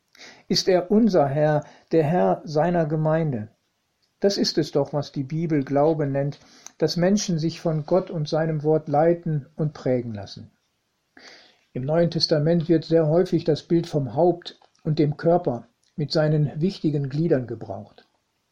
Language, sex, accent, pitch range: German, male, German, 150-175 Hz